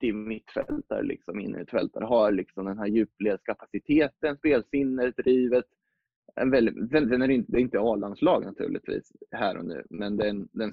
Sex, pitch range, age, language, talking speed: male, 105-130 Hz, 20-39, Swedish, 170 wpm